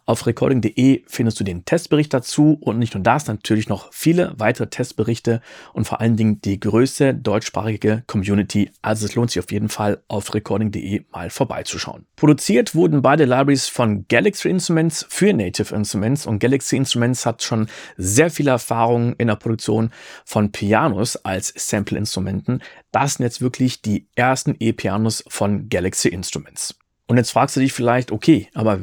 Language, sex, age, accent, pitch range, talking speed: German, male, 40-59, German, 105-140 Hz, 165 wpm